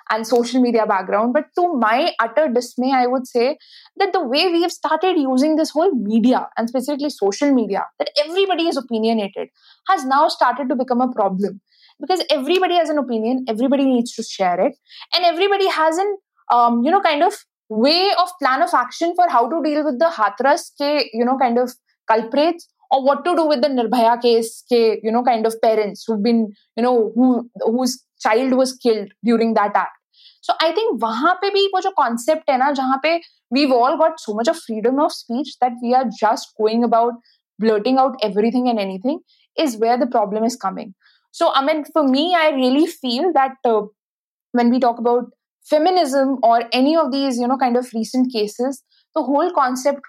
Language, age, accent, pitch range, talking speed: English, 20-39, Indian, 230-310 Hz, 195 wpm